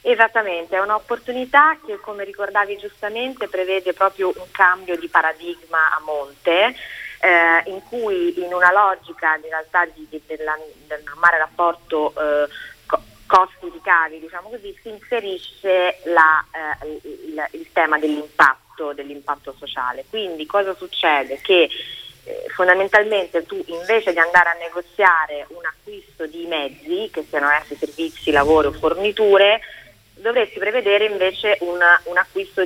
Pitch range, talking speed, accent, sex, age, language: 155-205 Hz, 135 wpm, native, female, 30-49, Italian